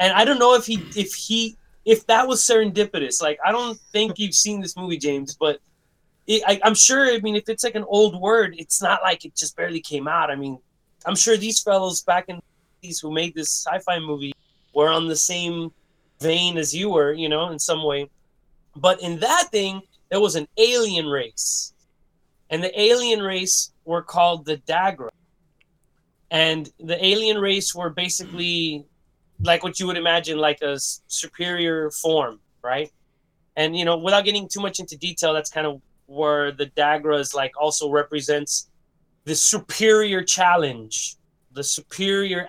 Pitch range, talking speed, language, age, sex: 155-200 Hz, 180 wpm, English, 20-39, male